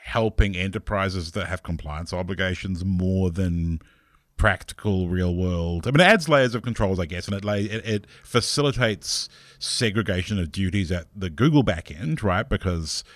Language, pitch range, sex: English, 90-105 Hz, male